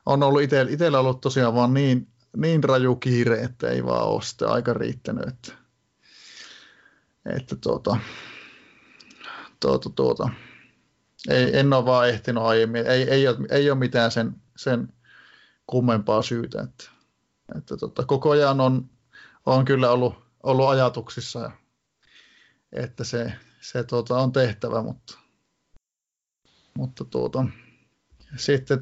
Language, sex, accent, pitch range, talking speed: Finnish, male, native, 120-135 Hz, 125 wpm